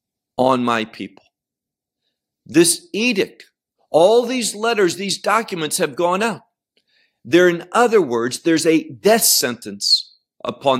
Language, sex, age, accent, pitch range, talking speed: English, male, 50-69, American, 135-210 Hz, 120 wpm